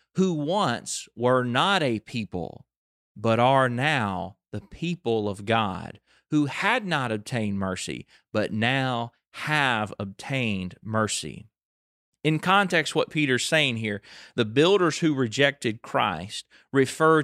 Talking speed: 120 wpm